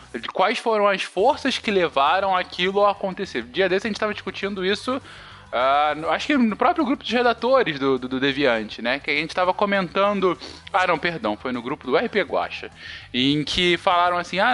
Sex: male